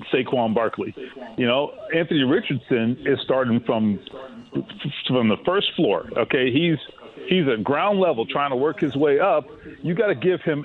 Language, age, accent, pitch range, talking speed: English, 40-59, American, 120-155 Hz, 165 wpm